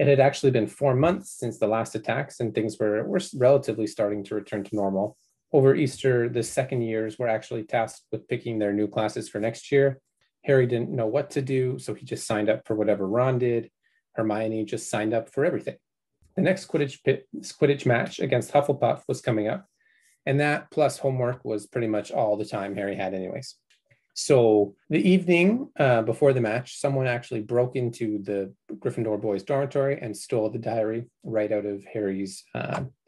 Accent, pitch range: American, 105-135 Hz